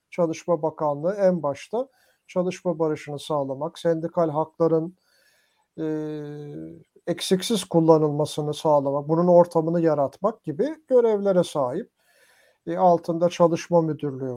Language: Turkish